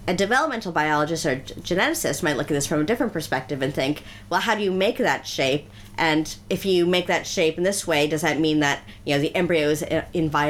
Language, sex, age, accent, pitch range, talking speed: English, female, 30-49, American, 130-175 Hz, 240 wpm